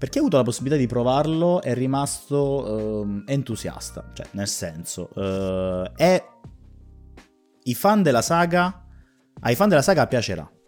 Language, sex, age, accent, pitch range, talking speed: Italian, male, 20-39, native, 100-130 Hz, 135 wpm